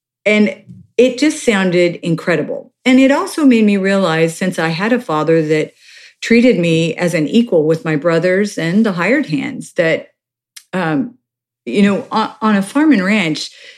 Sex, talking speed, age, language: female, 165 wpm, 50-69, English